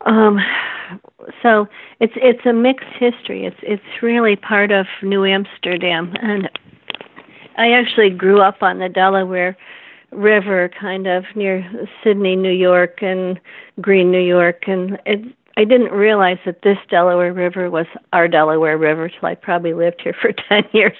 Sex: female